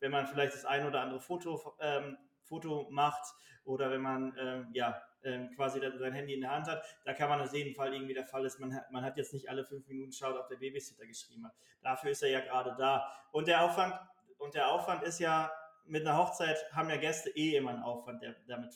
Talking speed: 235 wpm